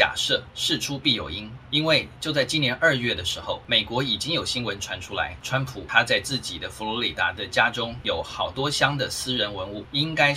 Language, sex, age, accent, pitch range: Chinese, male, 20-39, native, 105-145 Hz